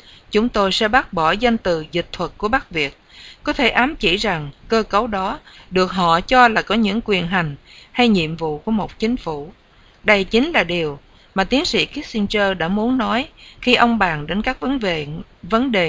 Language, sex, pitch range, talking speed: English, female, 170-230 Hz, 200 wpm